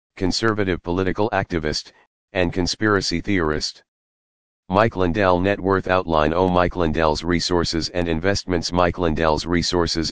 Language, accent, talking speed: English, American, 120 wpm